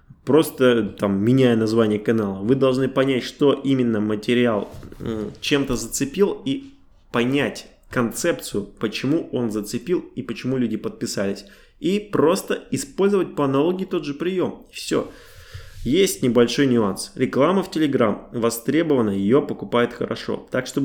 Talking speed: 125 wpm